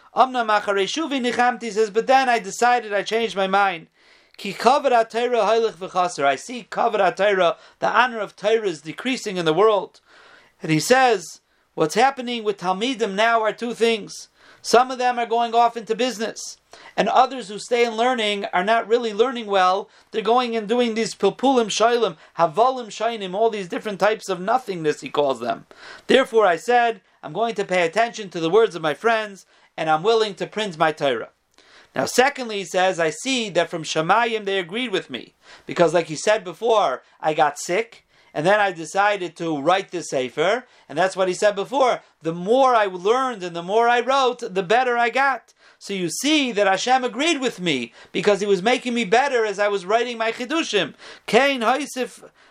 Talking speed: 185 wpm